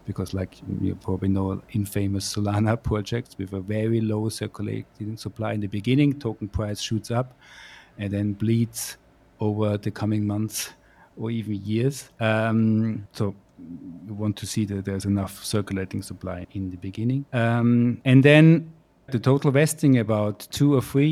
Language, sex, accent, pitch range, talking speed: English, male, German, 100-125 Hz, 160 wpm